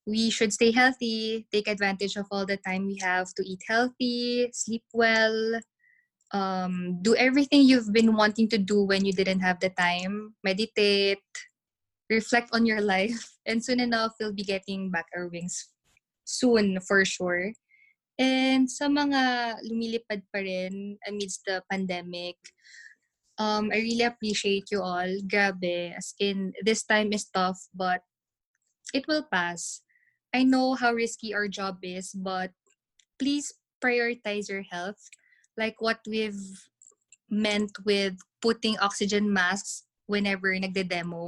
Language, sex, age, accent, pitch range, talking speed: Filipino, female, 20-39, native, 190-230 Hz, 140 wpm